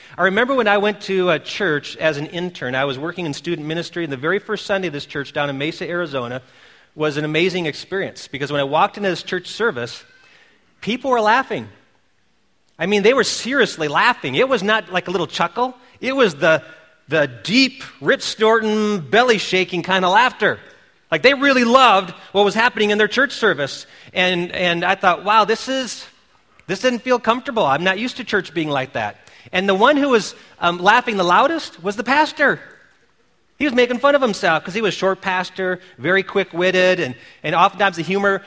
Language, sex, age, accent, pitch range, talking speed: English, male, 40-59, American, 160-215 Hz, 200 wpm